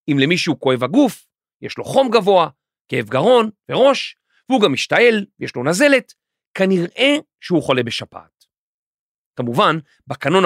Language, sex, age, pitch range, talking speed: Hebrew, male, 40-59, 155-235 Hz, 130 wpm